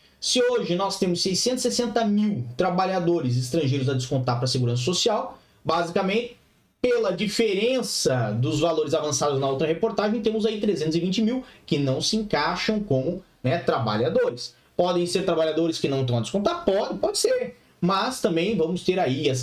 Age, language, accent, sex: 20-39, Portuguese, Brazilian, male